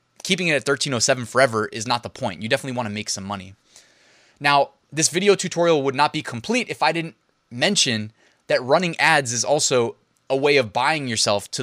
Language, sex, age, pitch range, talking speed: English, male, 20-39, 120-165 Hz, 200 wpm